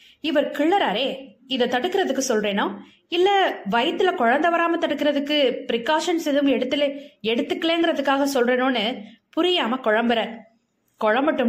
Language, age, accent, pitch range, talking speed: Tamil, 20-39, native, 215-295 Hz, 75 wpm